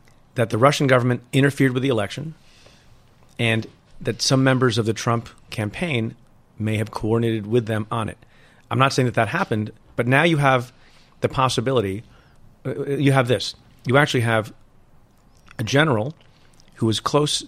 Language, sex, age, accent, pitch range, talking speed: English, male, 40-59, American, 110-130 Hz, 160 wpm